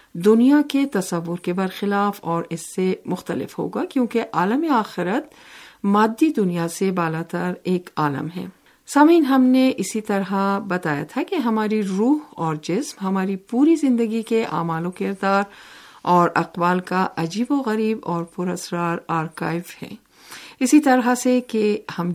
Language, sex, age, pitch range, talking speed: Urdu, female, 50-69, 170-230 Hz, 145 wpm